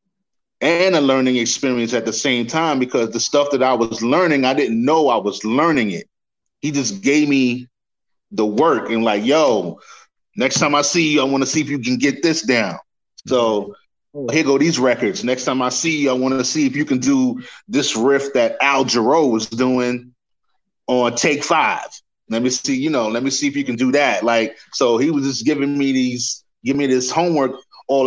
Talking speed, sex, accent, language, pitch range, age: 210 wpm, male, American, English, 125-155 Hz, 20-39